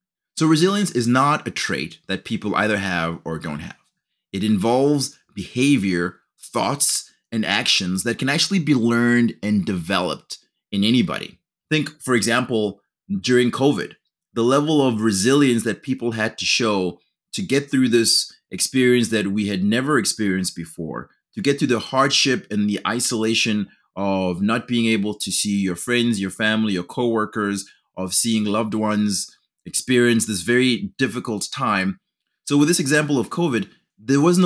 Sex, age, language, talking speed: male, 30-49, English, 155 wpm